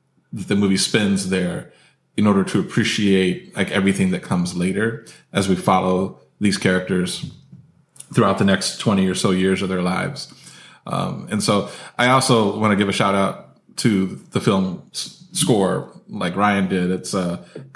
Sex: male